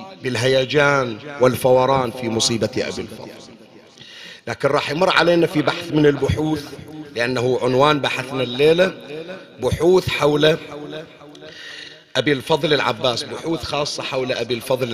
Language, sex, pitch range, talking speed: Arabic, male, 130-170 Hz, 115 wpm